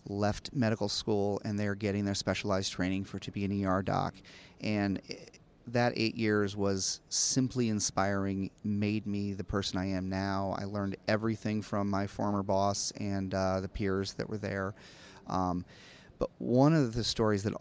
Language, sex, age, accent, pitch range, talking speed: English, male, 30-49, American, 95-110 Hz, 170 wpm